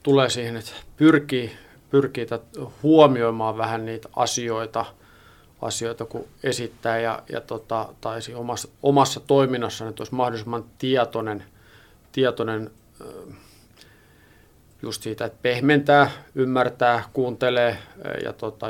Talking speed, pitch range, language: 105 wpm, 115-130 Hz, English